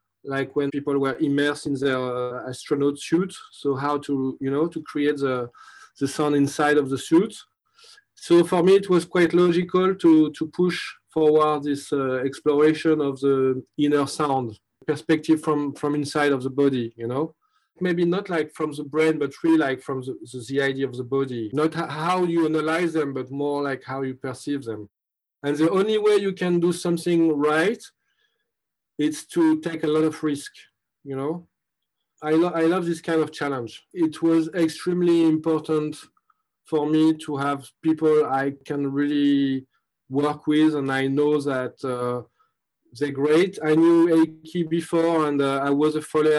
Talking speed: 180 wpm